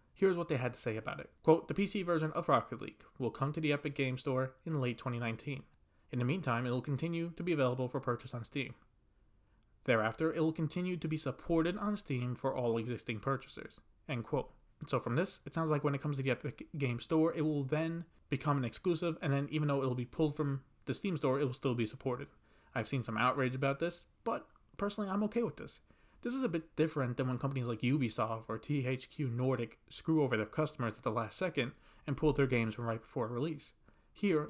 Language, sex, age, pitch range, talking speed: English, male, 20-39, 125-160 Hz, 230 wpm